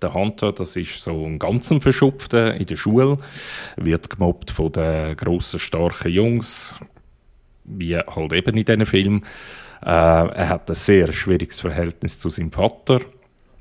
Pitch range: 85-110 Hz